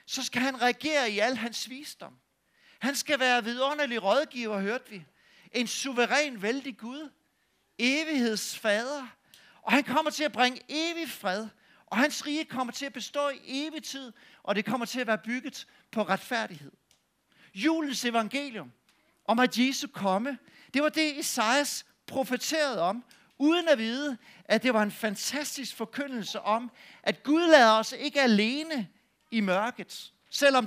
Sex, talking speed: male, 155 wpm